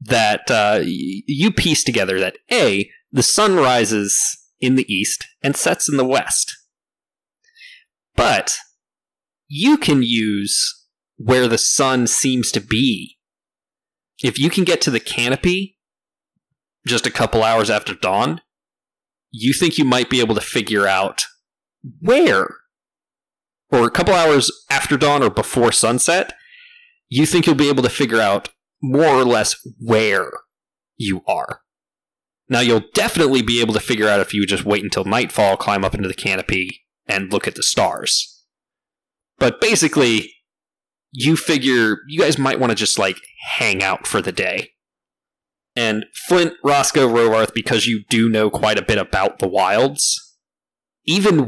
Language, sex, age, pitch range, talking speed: English, male, 30-49, 110-145 Hz, 150 wpm